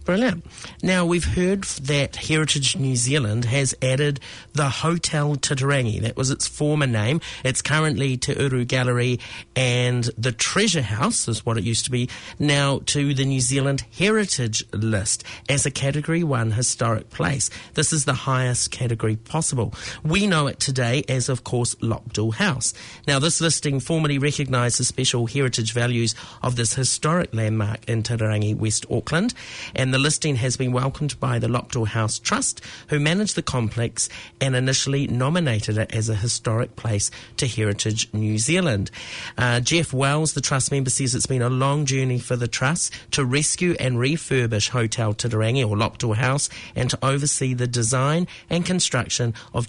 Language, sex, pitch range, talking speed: English, male, 115-145 Hz, 165 wpm